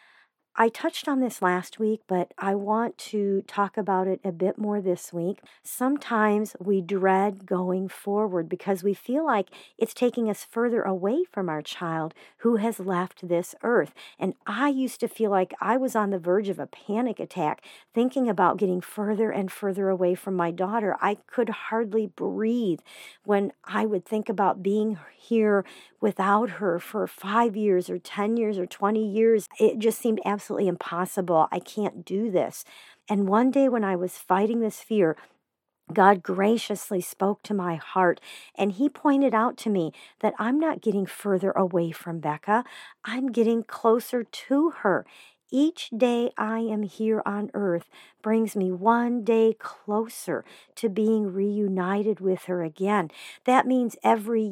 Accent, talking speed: American, 165 wpm